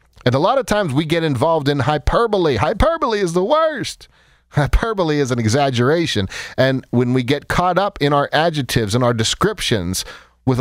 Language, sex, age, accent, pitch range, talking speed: English, male, 40-59, American, 110-170 Hz, 175 wpm